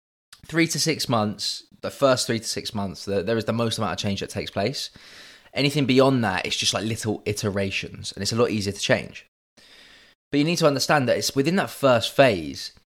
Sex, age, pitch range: male, 20-39, 105-130 Hz